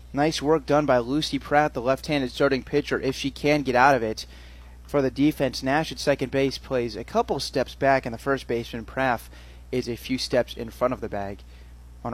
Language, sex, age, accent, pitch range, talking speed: English, male, 20-39, American, 125-150 Hz, 215 wpm